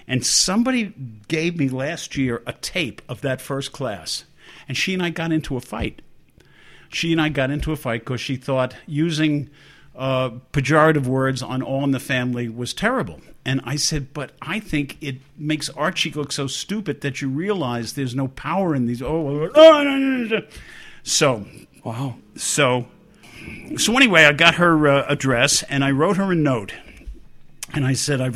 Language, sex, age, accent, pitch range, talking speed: English, male, 50-69, American, 125-160 Hz, 185 wpm